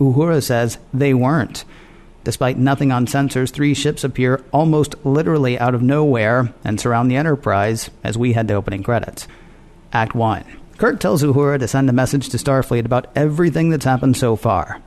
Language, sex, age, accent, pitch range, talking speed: English, male, 50-69, American, 120-145 Hz, 175 wpm